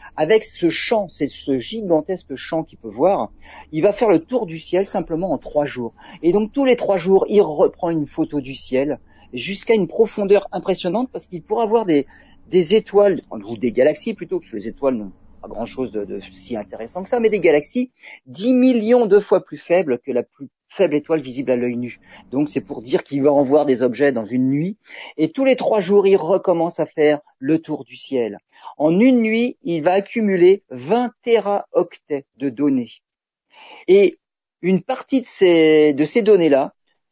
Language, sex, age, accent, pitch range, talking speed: French, male, 40-59, French, 145-220 Hz, 195 wpm